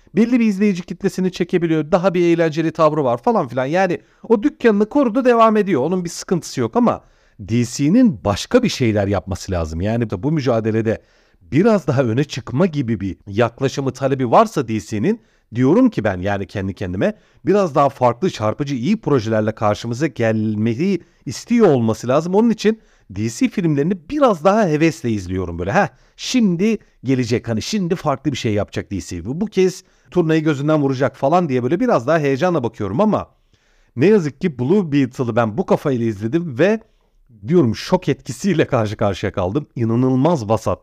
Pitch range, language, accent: 115-185 Hz, Turkish, native